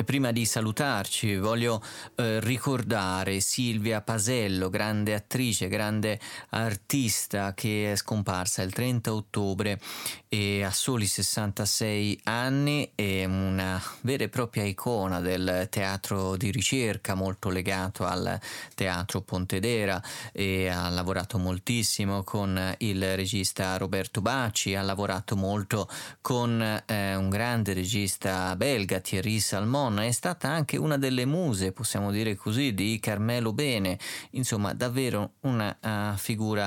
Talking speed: 125 wpm